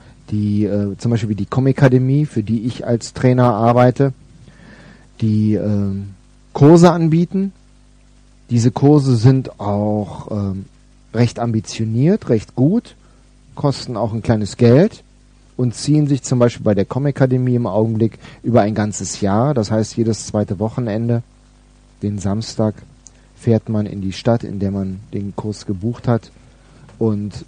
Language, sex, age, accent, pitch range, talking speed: German, male, 40-59, German, 105-125 Hz, 140 wpm